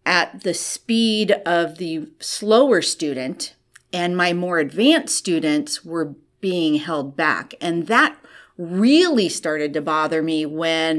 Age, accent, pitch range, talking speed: 40-59, American, 165-220 Hz, 130 wpm